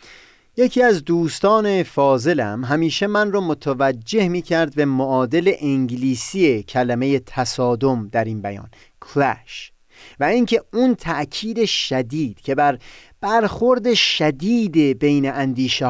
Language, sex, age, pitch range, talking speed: Persian, male, 30-49, 125-175 Hz, 115 wpm